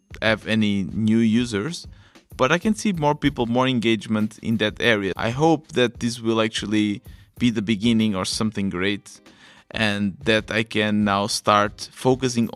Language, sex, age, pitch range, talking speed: English, male, 20-39, 105-120 Hz, 165 wpm